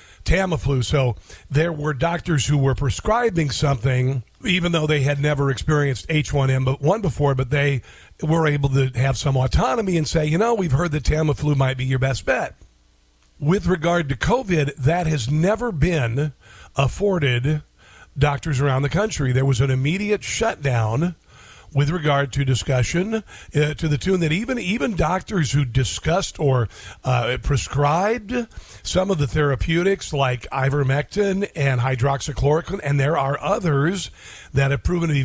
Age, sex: 50-69, male